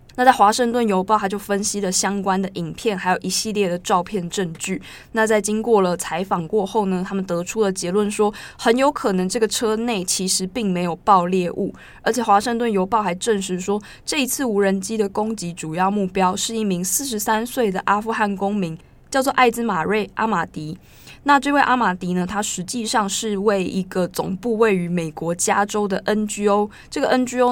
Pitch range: 180-215 Hz